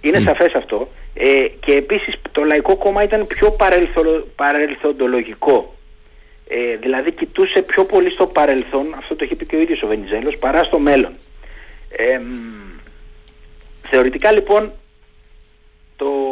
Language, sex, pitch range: Greek, male, 120-190 Hz